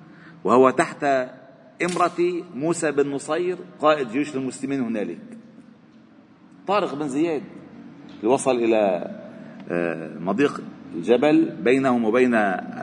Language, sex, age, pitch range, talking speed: Arabic, male, 50-69, 120-170 Hz, 95 wpm